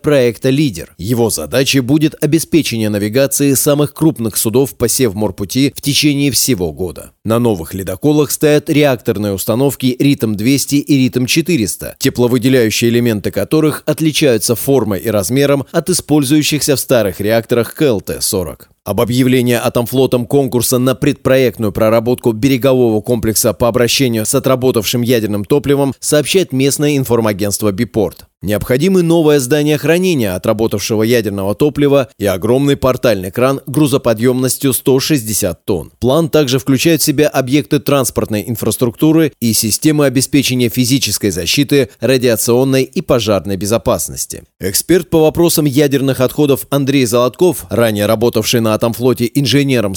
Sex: male